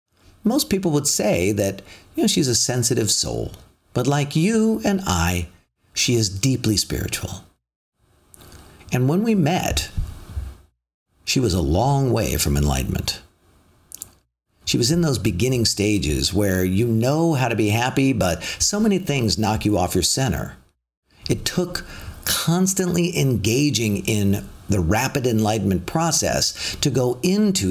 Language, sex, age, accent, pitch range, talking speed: English, male, 50-69, American, 90-135 Hz, 140 wpm